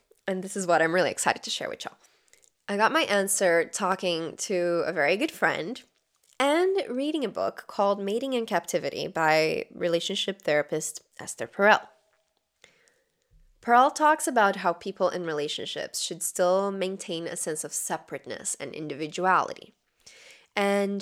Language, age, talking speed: English, 10-29, 145 wpm